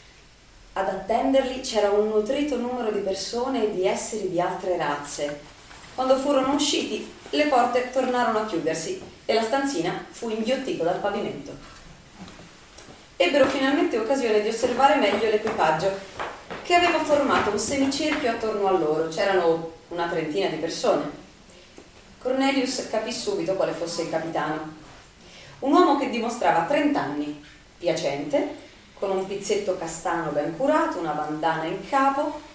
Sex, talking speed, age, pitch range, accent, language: female, 135 wpm, 30-49, 180-270 Hz, native, Italian